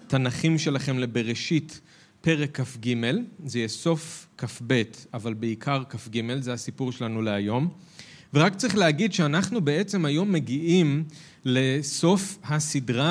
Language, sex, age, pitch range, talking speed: Hebrew, male, 40-59, 125-155 Hz, 115 wpm